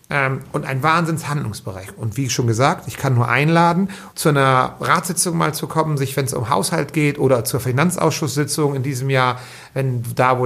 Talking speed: 190 wpm